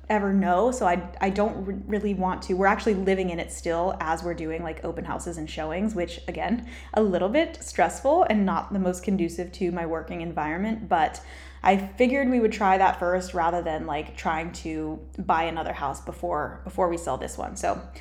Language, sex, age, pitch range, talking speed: English, female, 10-29, 175-220 Hz, 205 wpm